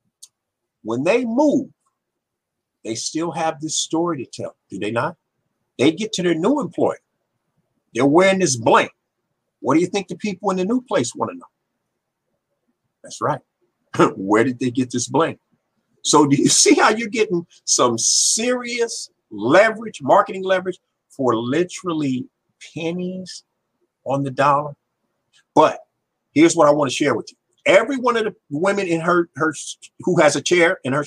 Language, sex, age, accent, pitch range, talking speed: English, male, 50-69, American, 165-240 Hz, 165 wpm